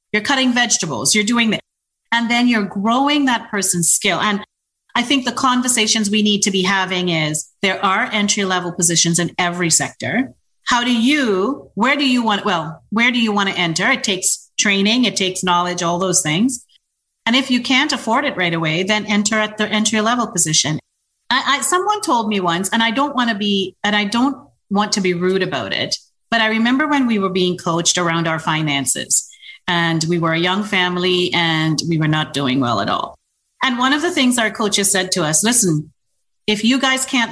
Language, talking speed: English, 210 wpm